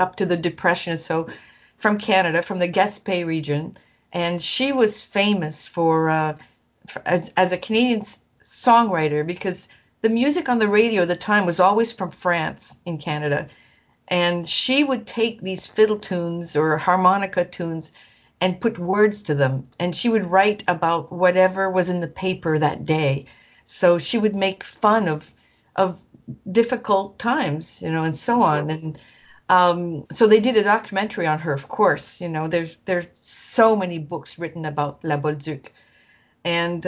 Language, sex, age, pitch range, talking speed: English, female, 50-69, 165-200 Hz, 165 wpm